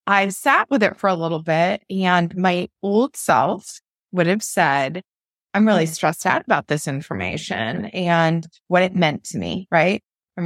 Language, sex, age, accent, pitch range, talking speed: English, female, 20-39, American, 175-220 Hz, 170 wpm